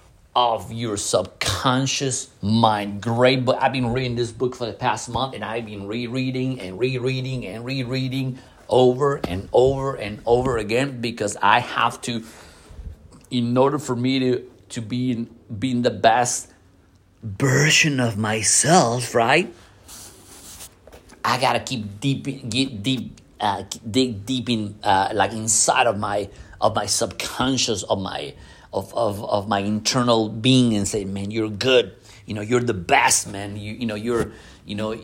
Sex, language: male, English